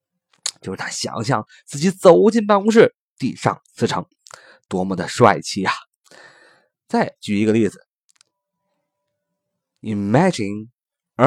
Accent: native